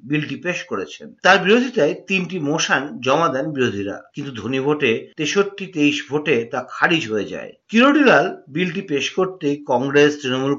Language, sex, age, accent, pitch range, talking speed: Bengali, male, 50-69, native, 135-190 Hz, 145 wpm